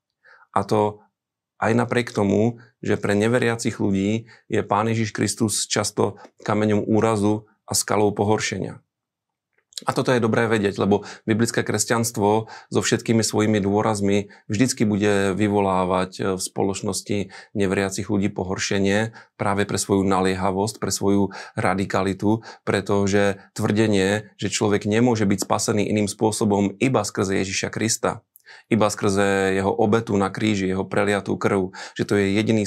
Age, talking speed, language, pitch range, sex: 30-49, 130 wpm, Slovak, 100-115 Hz, male